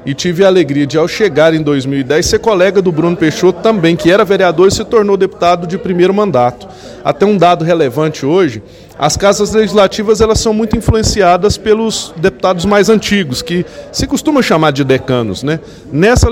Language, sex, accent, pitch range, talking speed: Portuguese, male, Brazilian, 155-200 Hz, 180 wpm